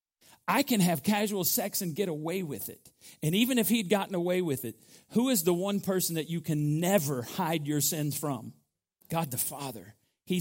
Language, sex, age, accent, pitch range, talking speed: English, male, 40-59, American, 160-225 Hz, 200 wpm